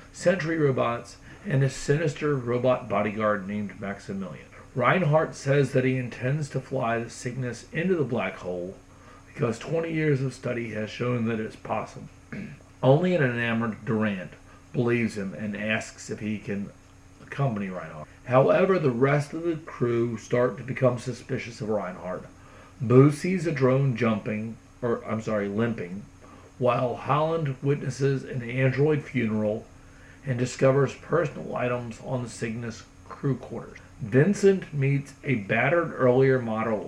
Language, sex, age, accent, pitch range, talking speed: English, male, 40-59, American, 105-135 Hz, 140 wpm